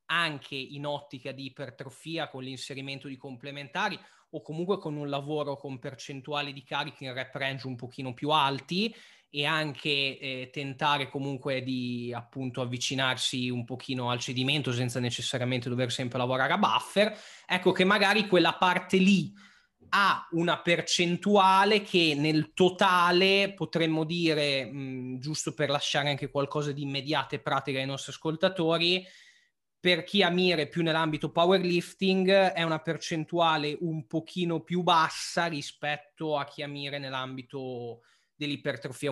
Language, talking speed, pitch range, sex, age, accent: Italian, 140 wpm, 135-170 Hz, male, 20-39, native